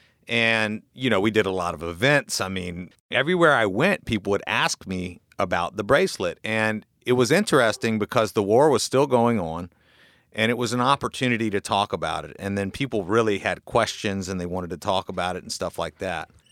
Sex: male